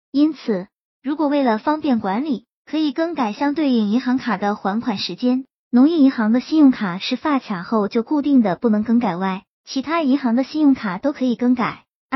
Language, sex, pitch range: Chinese, male, 215-280 Hz